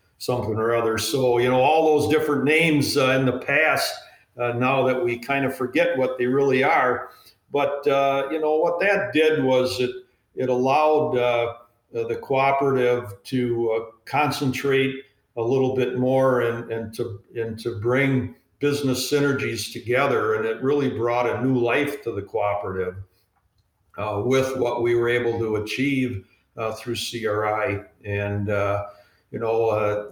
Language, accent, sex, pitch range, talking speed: English, American, male, 110-135 Hz, 160 wpm